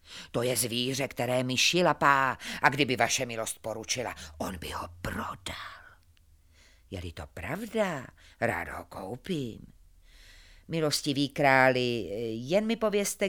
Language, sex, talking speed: Czech, female, 115 wpm